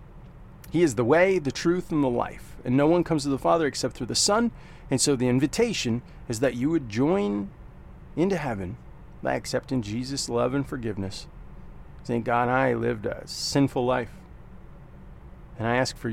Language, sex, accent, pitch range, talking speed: English, male, American, 115-155 Hz, 180 wpm